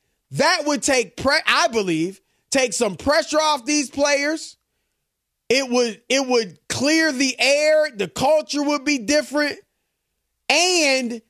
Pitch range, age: 210-275 Hz, 30-49